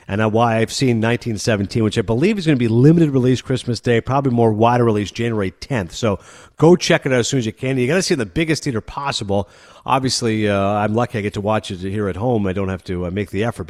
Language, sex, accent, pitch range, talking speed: English, male, American, 100-135 Hz, 265 wpm